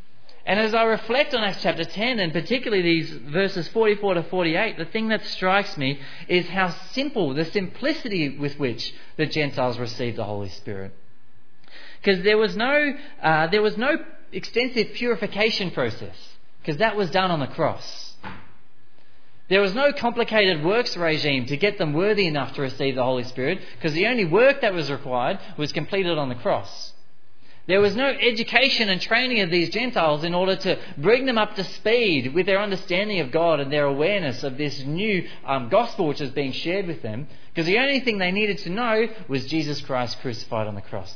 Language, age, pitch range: English, 30-49, 130-205 Hz